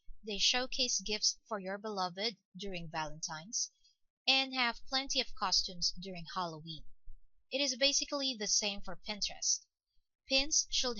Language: English